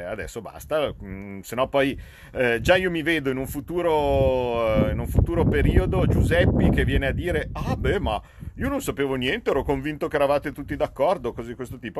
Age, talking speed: 40-59, 190 wpm